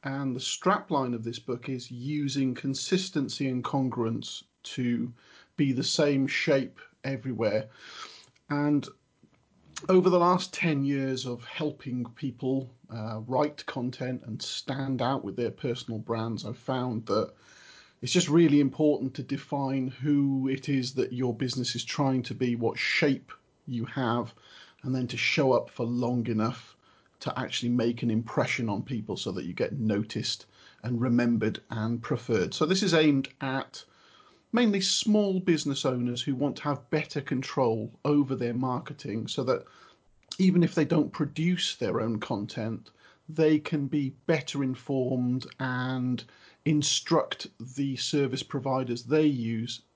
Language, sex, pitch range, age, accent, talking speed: English, male, 120-145 Hz, 40-59, British, 150 wpm